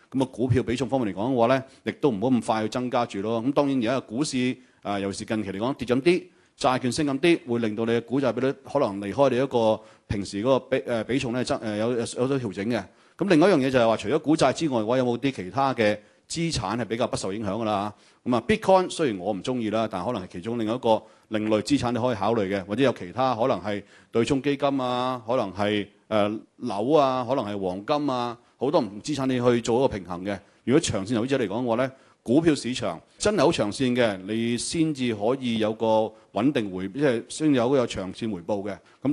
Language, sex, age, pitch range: Chinese, male, 30-49, 110-135 Hz